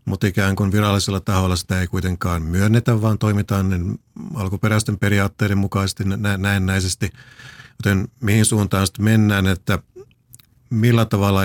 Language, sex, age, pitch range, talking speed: Finnish, male, 50-69, 95-115 Hz, 130 wpm